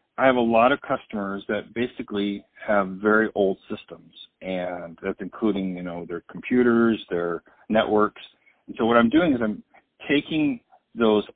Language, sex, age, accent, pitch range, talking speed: English, male, 50-69, American, 100-115 Hz, 160 wpm